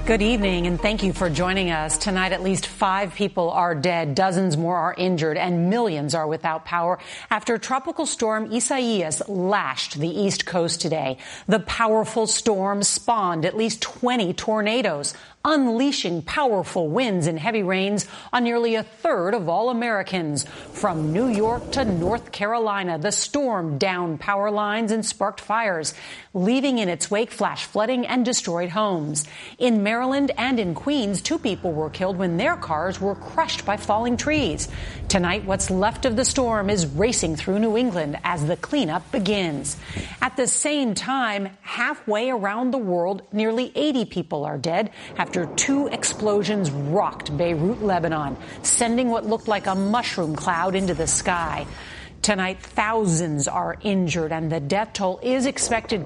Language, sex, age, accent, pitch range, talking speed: English, female, 40-59, American, 175-230 Hz, 160 wpm